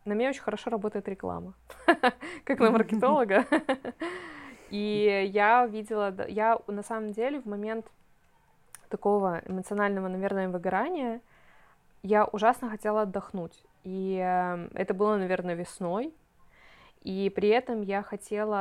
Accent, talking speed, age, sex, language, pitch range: native, 115 wpm, 20-39, female, Russian, 185-225 Hz